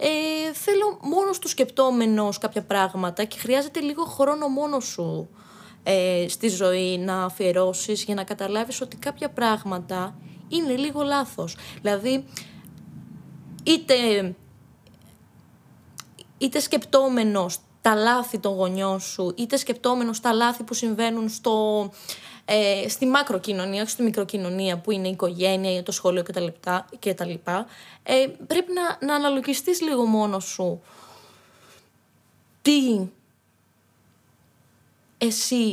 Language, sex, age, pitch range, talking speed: Greek, female, 20-39, 195-270 Hz, 110 wpm